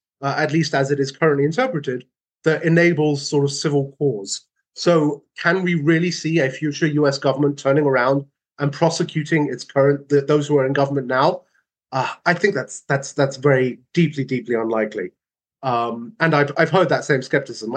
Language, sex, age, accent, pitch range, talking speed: English, male, 30-49, British, 135-165 Hz, 180 wpm